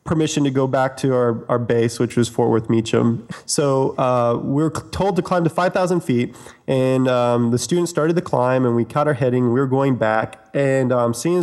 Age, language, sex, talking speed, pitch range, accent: 20-39, English, male, 215 wpm, 115-140 Hz, American